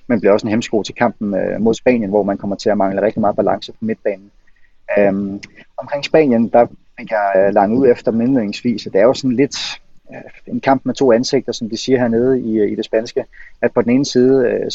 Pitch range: 105-130 Hz